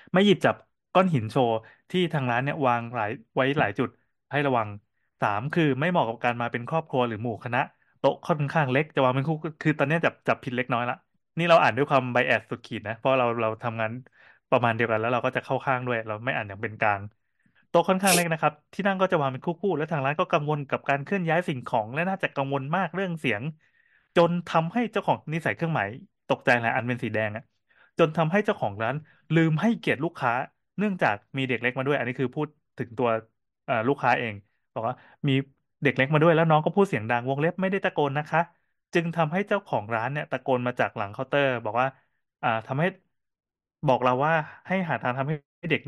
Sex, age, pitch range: male, 20-39, 120-165 Hz